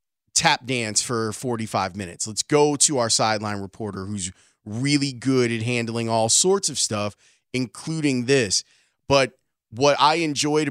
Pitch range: 115-140 Hz